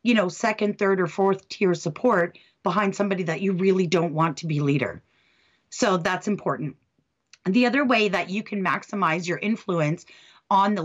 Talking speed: 175 wpm